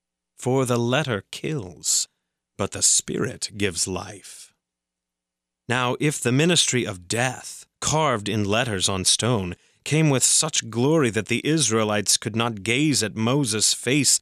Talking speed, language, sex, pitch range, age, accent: 140 wpm, English, male, 100-140 Hz, 30-49, American